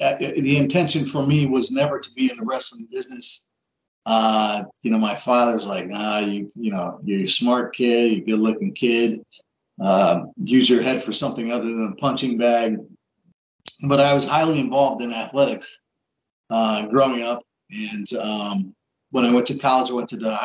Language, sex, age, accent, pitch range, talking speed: English, male, 40-59, American, 120-155 Hz, 185 wpm